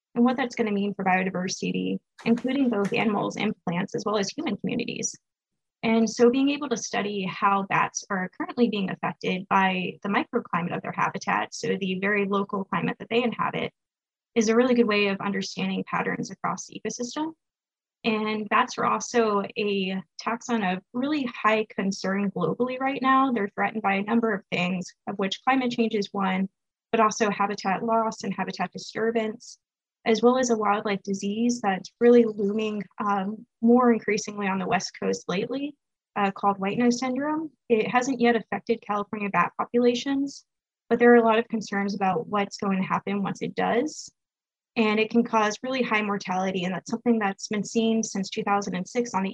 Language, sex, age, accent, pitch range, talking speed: English, female, 10-29, American, 195-235 Hz, 180 wpm